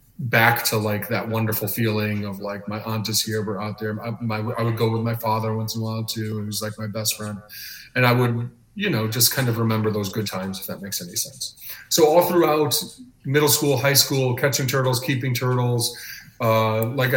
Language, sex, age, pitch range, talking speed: English, male, 30-49, 110-125 Hz, 215 wpm